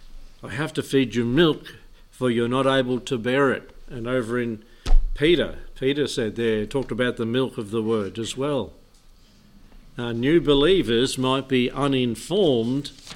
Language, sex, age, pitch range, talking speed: English, male, 60-79, 115-135 Hz, 155 wpm